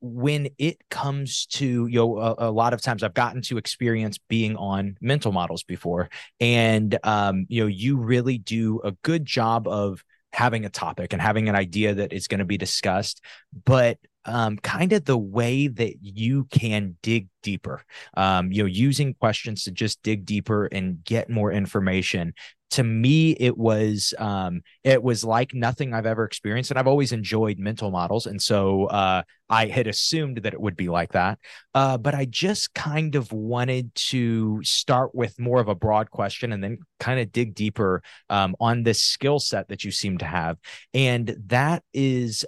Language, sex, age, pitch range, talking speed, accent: English, male, 20-39, 105-125 Hz, 185 wpm, American